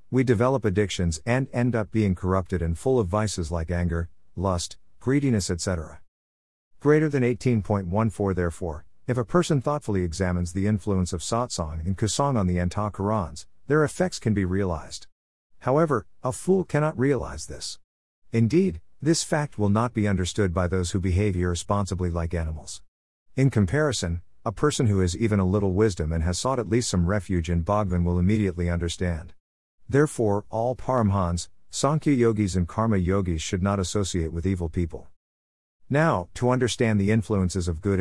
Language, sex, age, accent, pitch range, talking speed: English, male, 50-69, American, 85-115 Hz, 165 wpm